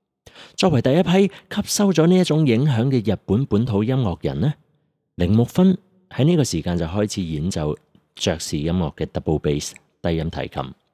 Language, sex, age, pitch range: Chinese, male, 30-49, 85-145 Hz